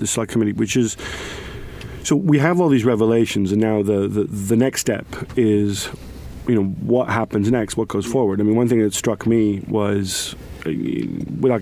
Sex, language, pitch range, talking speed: male, English, 105-125 Hz, 185 wpm